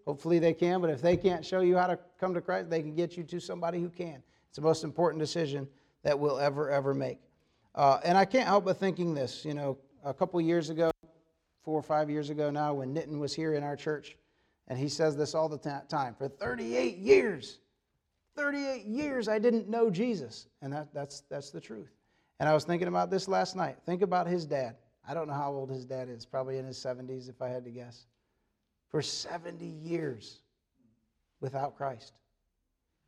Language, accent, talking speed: English, American, 210 wpm